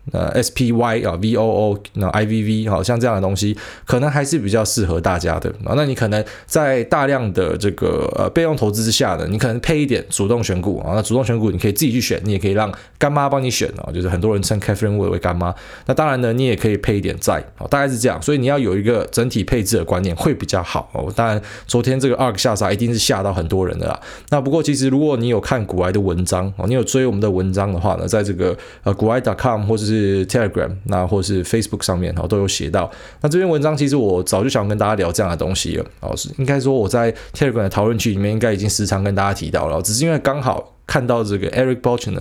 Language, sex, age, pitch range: Chinese, male, 20-39, 100-125 Hz